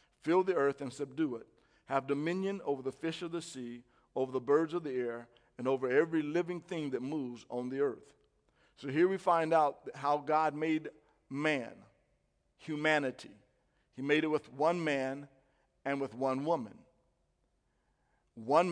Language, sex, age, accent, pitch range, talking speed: English, male, 50-69, American, 135-170 Hz, 165 wpm